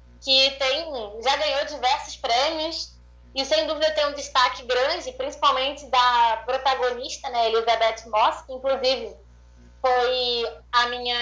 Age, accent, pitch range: 20-39, Brazilian, 220-280 Hz